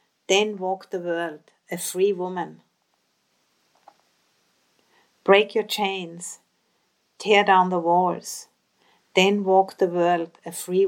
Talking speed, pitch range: 110 wpm, 175-205 Hz